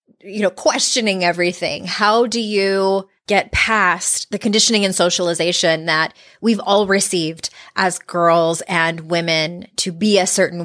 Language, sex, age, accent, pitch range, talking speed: English, female, 20-39, American, 180-225 Hz, 140 wpm